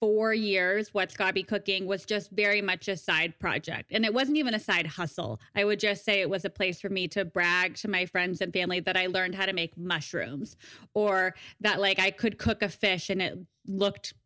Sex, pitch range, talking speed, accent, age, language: female, 180-210 Hz, 225 wpm, American, 20-39, English